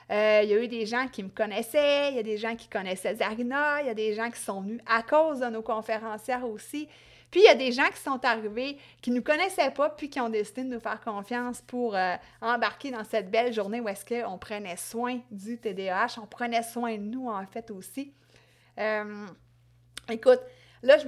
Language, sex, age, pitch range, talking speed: French, female, 30-49, 210-260 Hz, 225 wpm